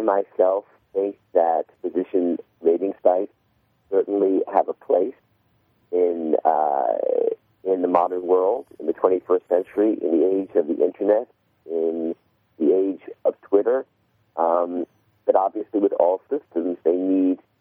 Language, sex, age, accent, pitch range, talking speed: English, male, 50-69, American, 90-125 Hz, 135 wpm